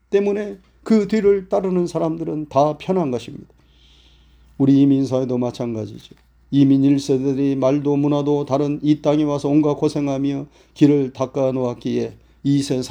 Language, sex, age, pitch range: Korean, male, 40-59, 115-160 Hz